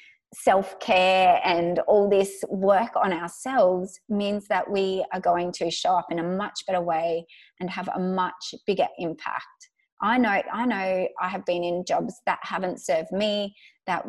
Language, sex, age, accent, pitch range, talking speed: English, female, 20-39, Australian, 180-220 Hz, 170 wpm